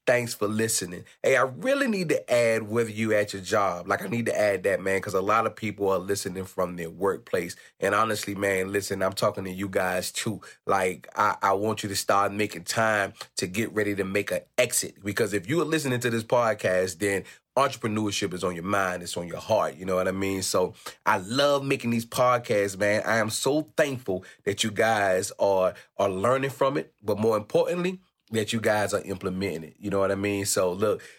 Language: English